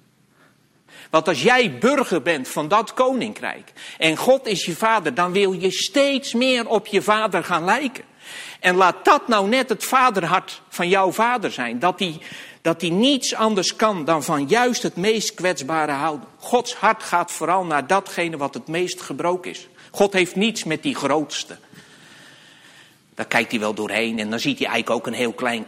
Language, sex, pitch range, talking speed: English, male, 150-200 Hz, 185 wpm